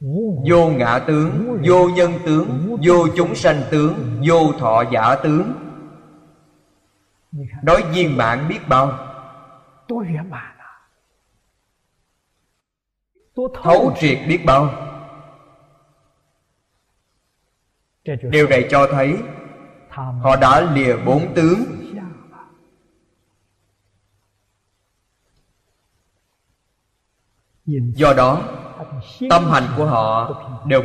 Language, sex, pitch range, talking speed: Vietnamese, male, 105-155 Hz, 75 wpm